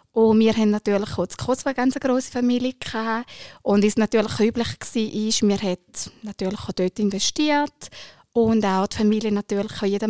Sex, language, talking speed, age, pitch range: female, German, 160 wpm, 20-39, 210-255 Hz